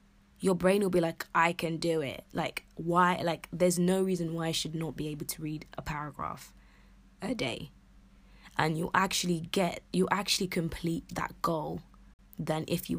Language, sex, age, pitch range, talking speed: English, female, 20-39, 160-185 Hz, 180 wpm